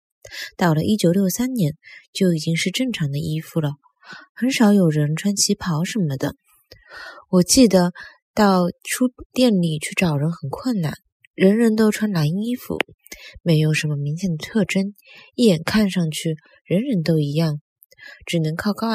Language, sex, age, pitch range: Chinese, female, 20-39, 160-215 Hz